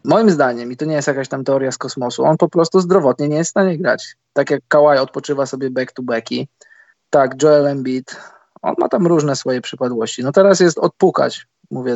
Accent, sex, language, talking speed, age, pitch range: native, male, Polish, 210 wpm, 20-39, 135-165 Hz